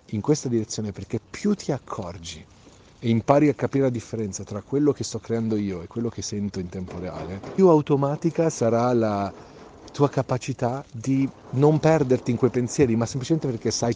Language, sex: Italian, male